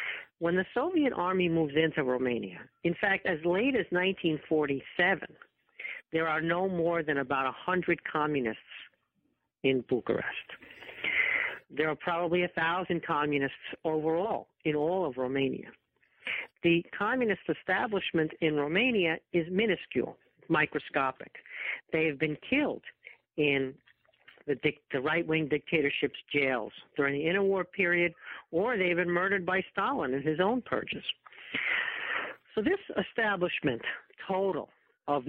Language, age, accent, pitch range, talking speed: English, 50-69, American, 150-195 Hz, 120 wpm